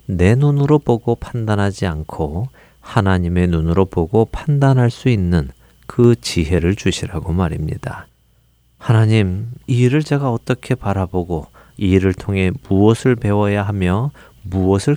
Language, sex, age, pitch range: Korean, male, 40-59, 85-120 Hz